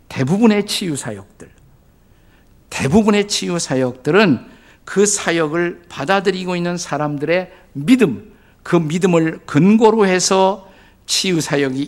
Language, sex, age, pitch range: Korean, male, 50-69, 125-185 Hz